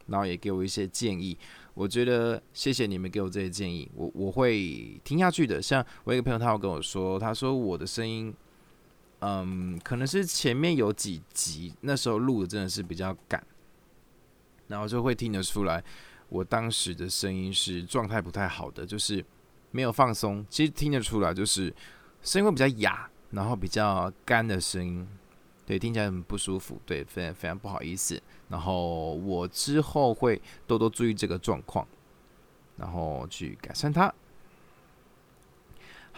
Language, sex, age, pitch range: Chinese, male, 20-39, 95-115 Hz